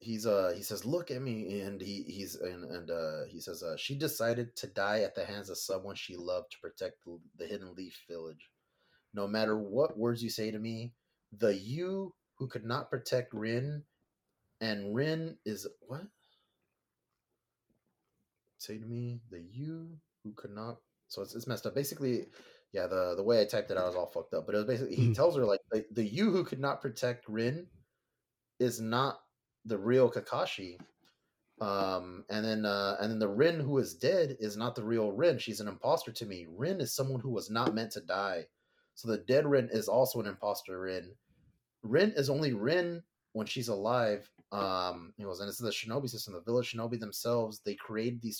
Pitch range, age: 105-135 Hz, 30-49